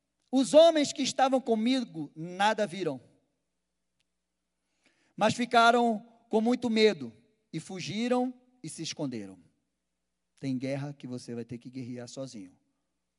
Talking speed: 120 wpm